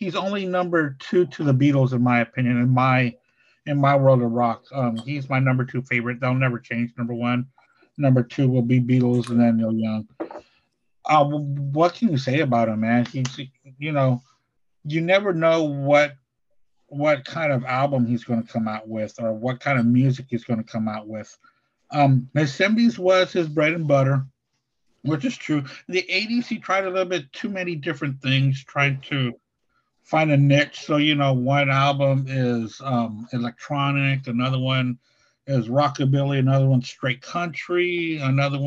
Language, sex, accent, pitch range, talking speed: English, male, American, 125-155 Hz, 185 wpm